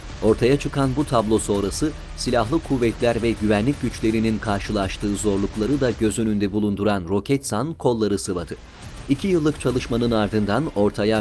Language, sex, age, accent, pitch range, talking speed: Turkish, male, 40-59, native, 105-130 Hz, 130 wpm